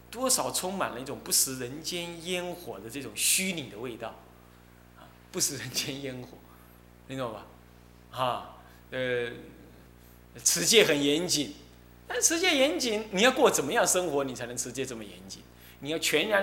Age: 20-39